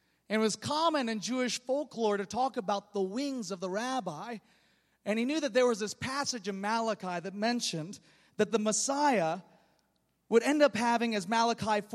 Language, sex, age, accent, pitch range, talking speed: English, male, 30-49, American, 225-315 Hz, 180 wpm